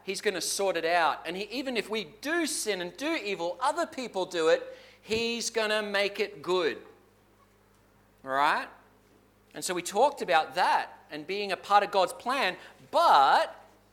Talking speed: 180 wpm